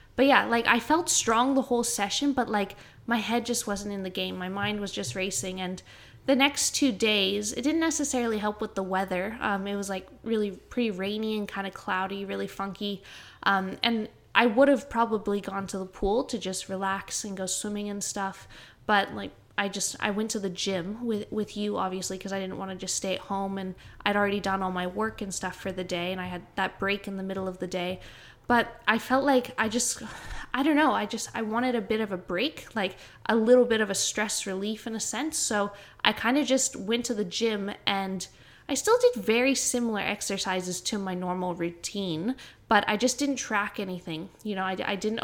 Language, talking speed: English, 225 wpm